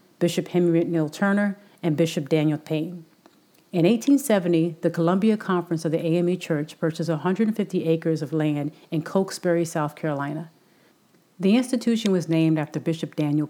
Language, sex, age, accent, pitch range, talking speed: English, female, 40-59, American, 160-185 Hz, 145 wpm